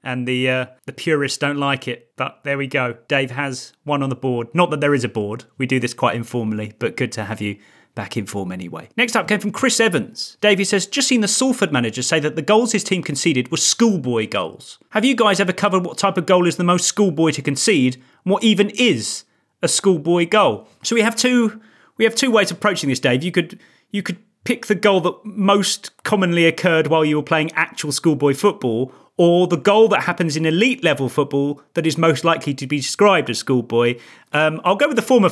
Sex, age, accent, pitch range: male, 30-49, British, 135-200 Hz